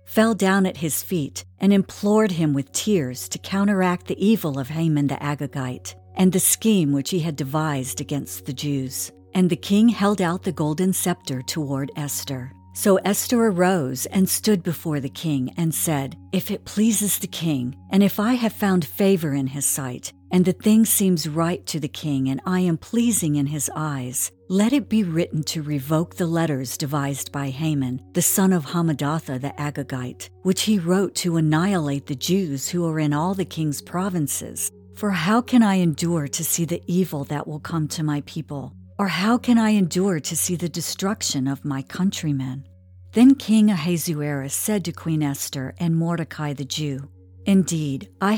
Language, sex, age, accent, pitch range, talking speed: English, female, 50-69, American, 140-190 Hz, 185 wpm